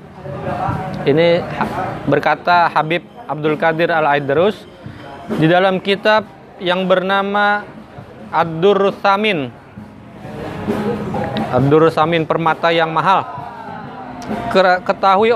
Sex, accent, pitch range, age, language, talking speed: male, native, 155-195 Hz, 20-39, Indonesian, 65 wpm